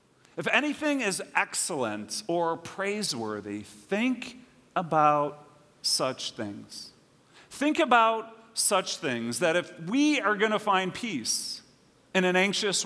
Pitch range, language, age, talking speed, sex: 130-190 Hz, English, 40-59, 115 wpm, male